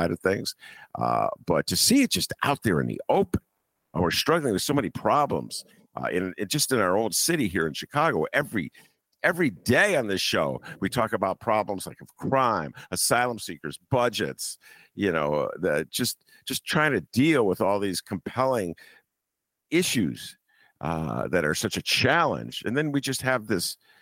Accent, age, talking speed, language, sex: American, 50-69, 180 wpm, English, male